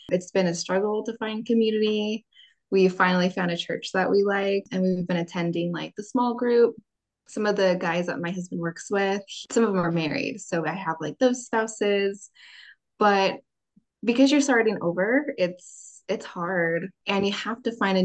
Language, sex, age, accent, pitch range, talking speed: English, female, 20-39, American, 175-220 Hz, 190 wpm